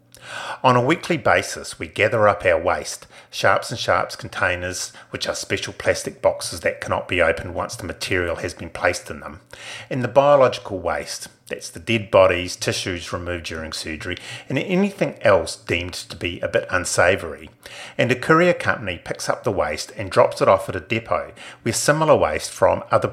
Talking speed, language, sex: 185 wpm, English, male